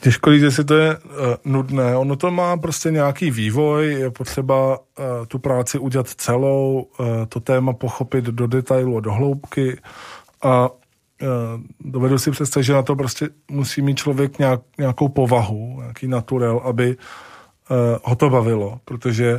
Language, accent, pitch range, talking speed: Czech, native, 120-140 Hz, 160 wpm